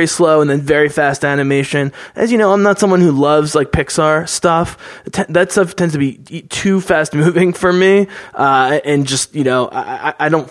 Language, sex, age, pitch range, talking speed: English, male, 20-39, 135-175 Hz, 200 wpm